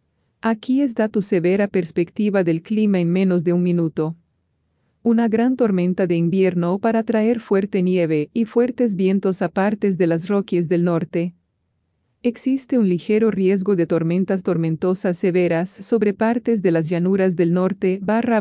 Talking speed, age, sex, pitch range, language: 155 wpm, 40-59, female, 175-210 Hz, English